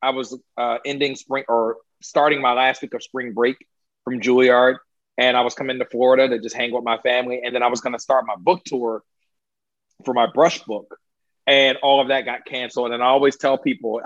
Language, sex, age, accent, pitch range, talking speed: English, male, 40-59, American, 120-140 Hz, 220 wpm